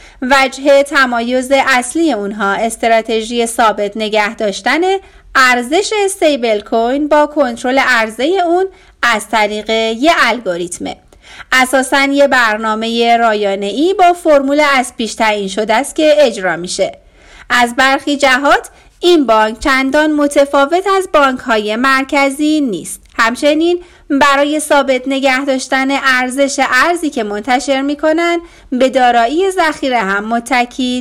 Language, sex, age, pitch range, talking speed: Persian, female, 30-49, 230-305 Hz, 115 wpm